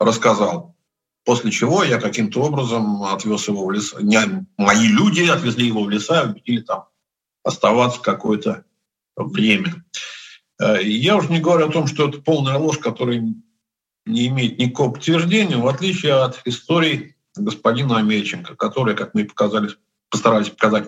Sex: male